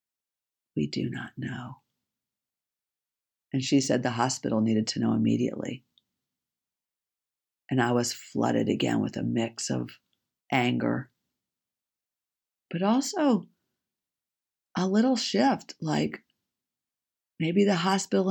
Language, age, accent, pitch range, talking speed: English, 50-69, American, 120-175 Hz, 105 wpm